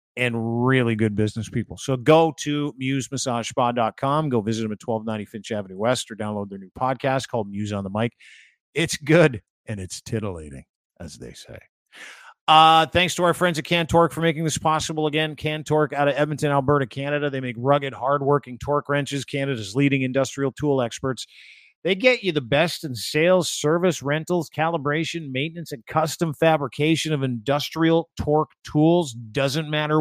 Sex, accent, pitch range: male, American, 125-155 Hz